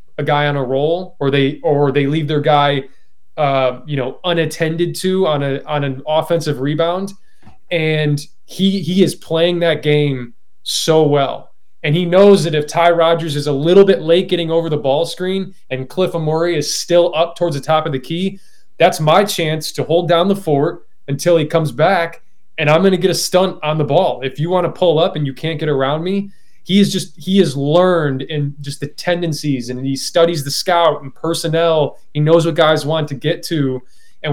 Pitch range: 145-175 Hz